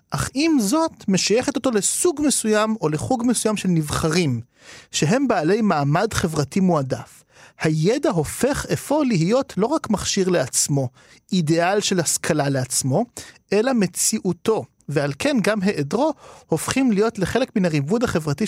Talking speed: 135 wpm